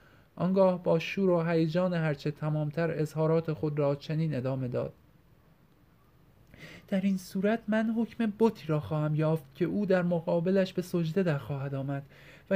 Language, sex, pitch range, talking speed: Persian, male, 155-180 Hz, 155 wpm